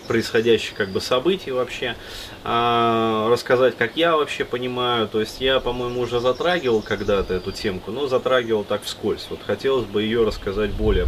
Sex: male